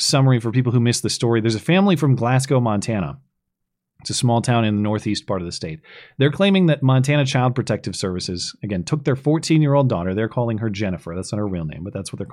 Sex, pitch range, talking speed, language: male, 105-145 Hz, 240 wpm, English